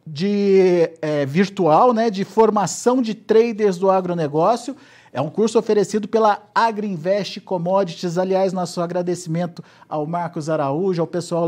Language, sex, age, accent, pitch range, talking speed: Portuguese, male, 50-69, Brazilian, 155-210 Hz, 130 wpm